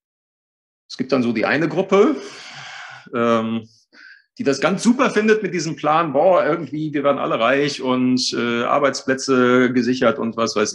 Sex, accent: male, German